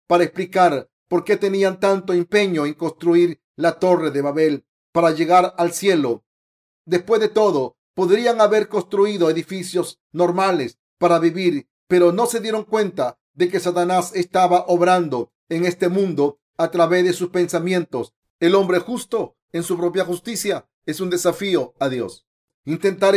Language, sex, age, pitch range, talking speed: Spanish, male, 40-59, 175-200 Hz, 150 wpm